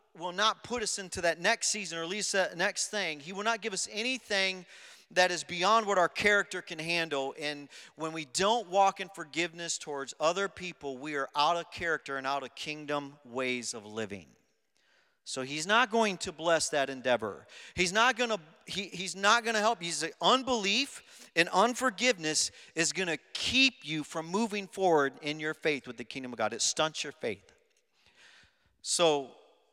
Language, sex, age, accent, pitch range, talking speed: English, male, 40-59, American, 130-195 Hz, 180 wpm